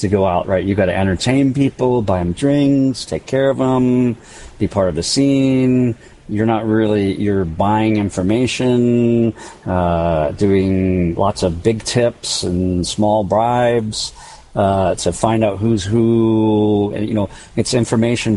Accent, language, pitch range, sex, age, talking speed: American, English, 95-110 Hz, male, 40-59, 150 wpm